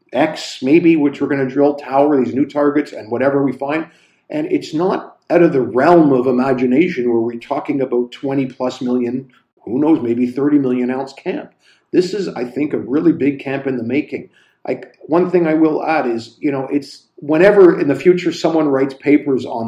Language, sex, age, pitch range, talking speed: English, male, 50-69, 120-150 Hz, 200 wpm